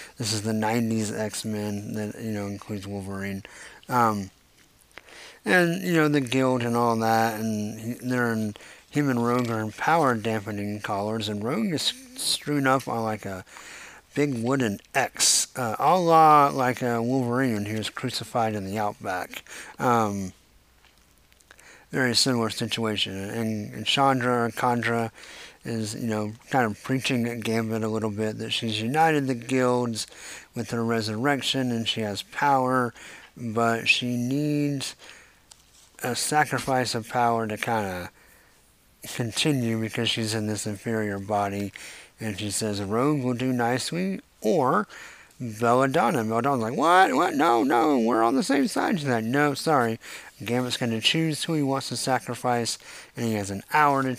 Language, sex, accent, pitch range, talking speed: English, male, American, 110-130 Hz, 160 wpm